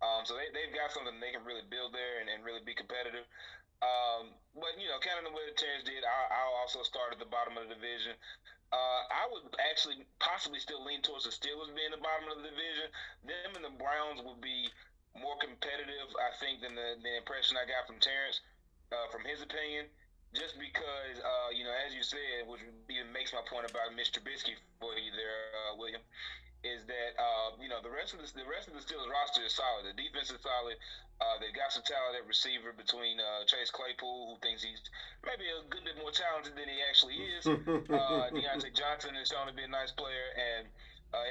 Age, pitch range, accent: 30-49, 115-140 Hz, American